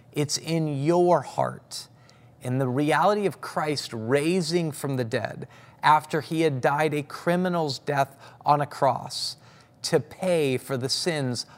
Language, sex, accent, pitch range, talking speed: English, male, American, 130-165 Hz, 145 wpm